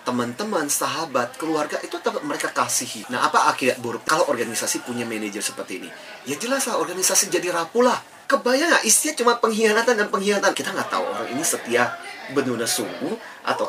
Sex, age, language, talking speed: male, 30-49, Indonesian, 160 wpm